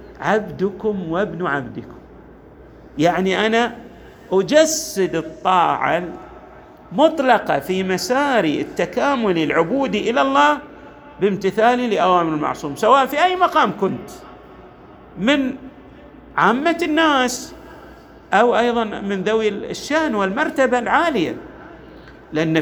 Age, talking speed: 50-69, 90 wpm